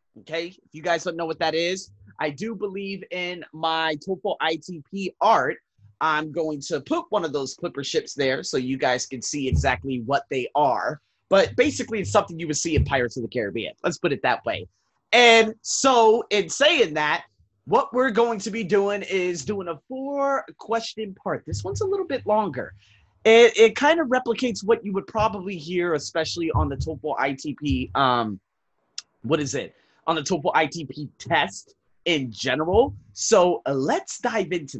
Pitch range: 130-210 Hz